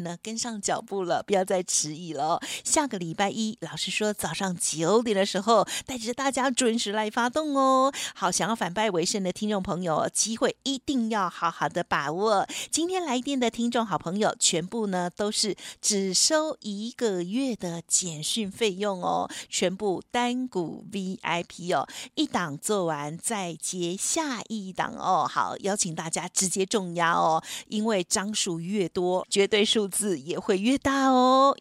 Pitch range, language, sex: 185-245 Hz, Chinese, female